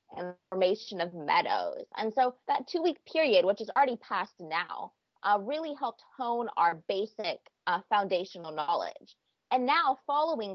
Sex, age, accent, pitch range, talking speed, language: female, 20-39, American, 190-265 Hz, 155 wpm, English